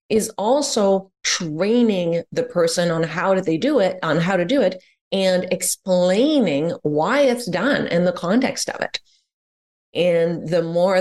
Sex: female